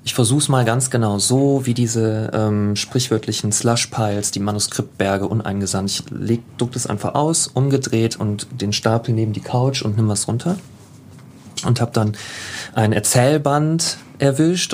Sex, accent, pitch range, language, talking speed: male, German, 115-145 Hz, German, 145 wpm